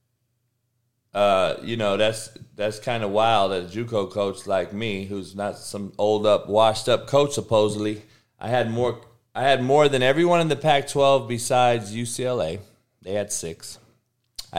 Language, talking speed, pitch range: English, 165 wpm, 110-140 Hz